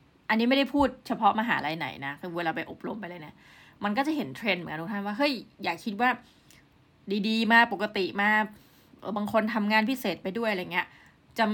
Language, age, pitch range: Thai, 20-39, 185-240 Hz